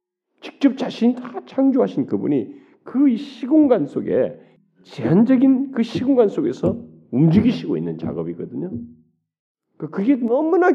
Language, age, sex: Korean, 40-59, male